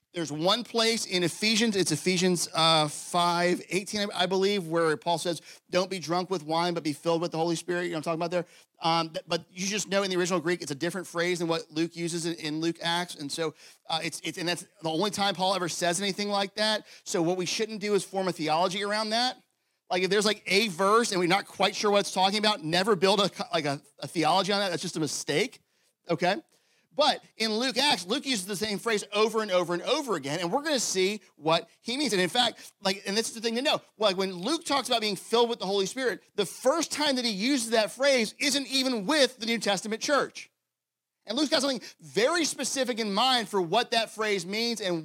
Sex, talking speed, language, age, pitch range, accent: male, 245 wpm, English, 40-59, 170-220 Hz, American